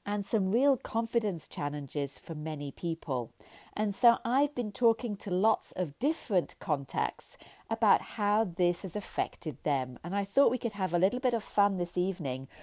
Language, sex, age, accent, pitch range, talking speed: English, female, 40-59, British, 160-230 Hz, 175 wpm